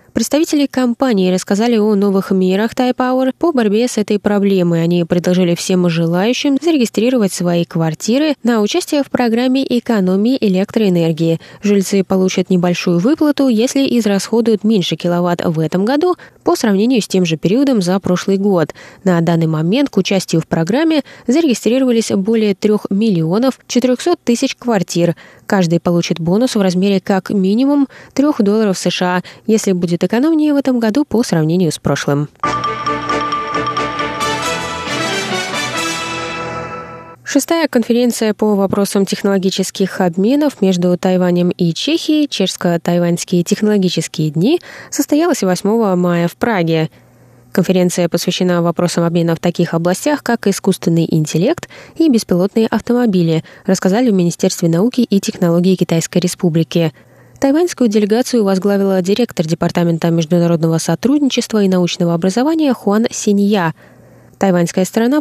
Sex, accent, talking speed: female, native, 120 wpm